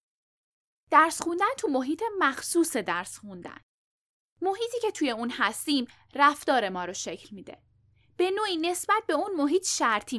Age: 10-29